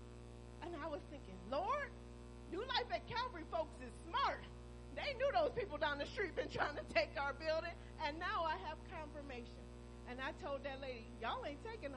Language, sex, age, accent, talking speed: English, female, 40-59, American, 190 wpm